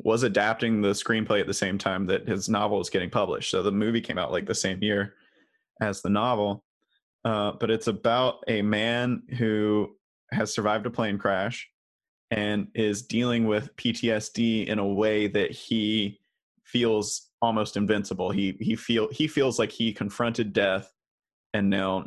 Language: English